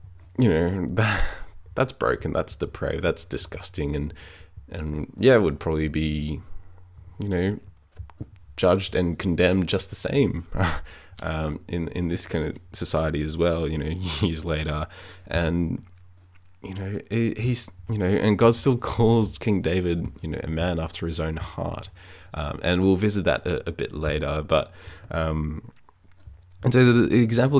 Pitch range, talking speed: 80-100 Hz, 155 wpm